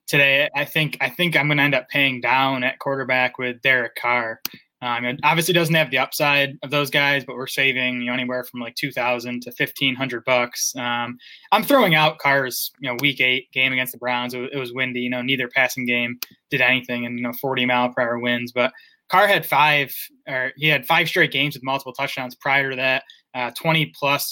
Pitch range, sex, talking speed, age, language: 125-145 Hz, male, 230 wpm, 20-39, English